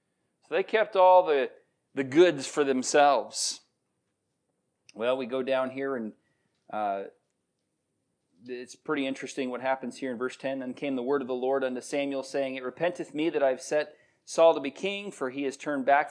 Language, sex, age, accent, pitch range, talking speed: English, male, 40-59, American, 130-155 Hz, 185 wpm